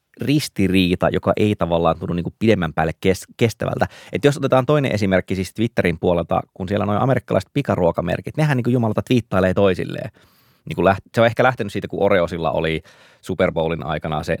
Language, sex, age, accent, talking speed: Finnish, male, 20-39, native, 170 wpm